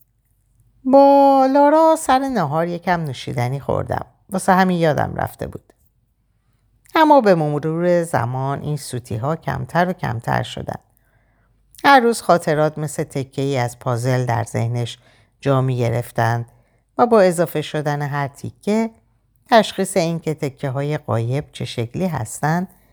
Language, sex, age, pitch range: Persian, female, 60-79, 120-175 Hz